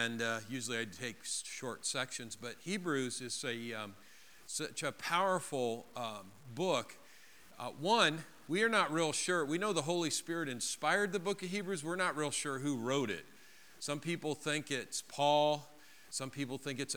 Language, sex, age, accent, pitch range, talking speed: English, male, 50-69, American, 130-170 Hz, 175 wpm